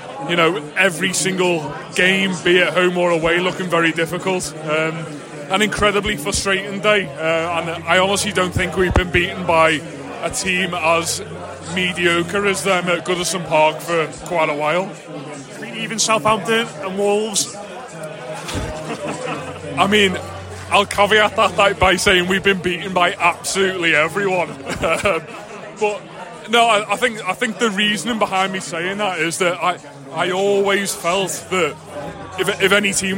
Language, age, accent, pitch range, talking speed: English, 20-39, British, 165-195 Hz, 145 wpm